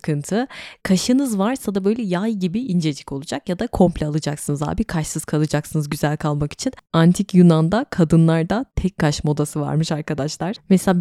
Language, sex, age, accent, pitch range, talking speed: Turkish, female, 20-39, native, 155-190 Hz, 155 wpm